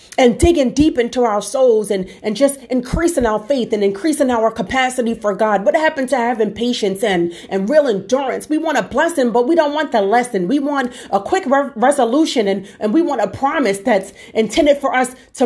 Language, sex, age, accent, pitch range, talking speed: English, female, 40-59, American, 210-315 Hz, 210 wpm